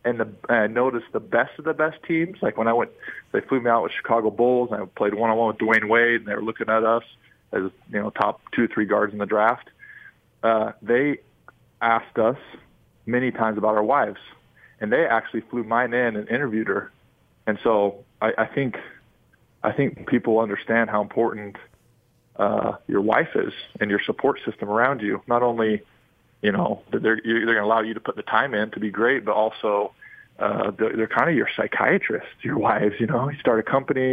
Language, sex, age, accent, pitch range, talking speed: English, male, 20-39, American, 105-120 Hz, 215 wpm